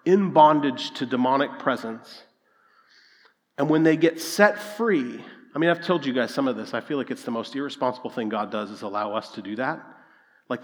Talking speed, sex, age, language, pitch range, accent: 210 wpm, male, 40-59, English, 165-240 Hz, American